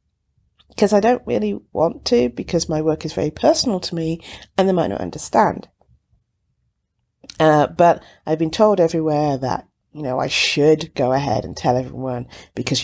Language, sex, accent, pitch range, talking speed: English, female, British, 125-185 Hz, 170 wpm